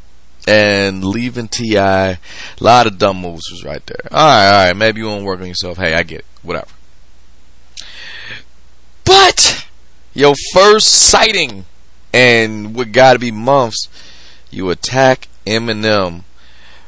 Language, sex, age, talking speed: English, male, 30-49, 130 wpm